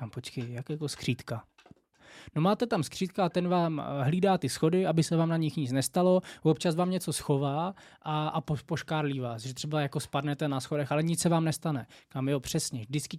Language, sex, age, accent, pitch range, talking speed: Czech, male, 20-39, native, 140-160 Hz, 200 wpm